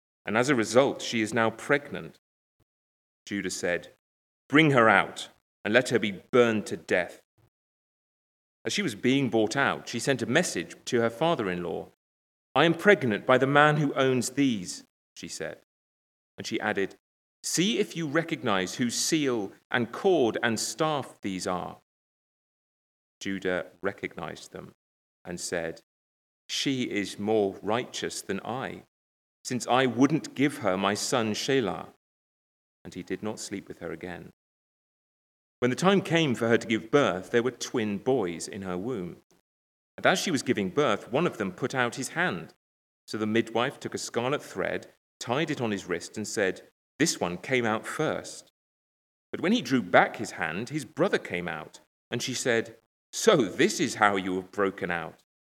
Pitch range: 90-130 Hz